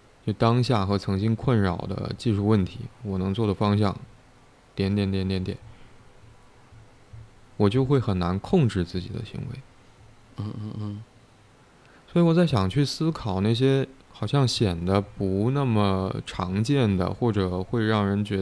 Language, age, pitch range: Chinese, 20-39, 100-125 Hz